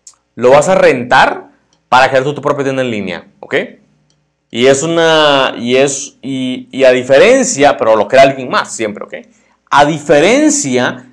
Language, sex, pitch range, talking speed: Spanish, male, 125-165 Hz, 160 wpm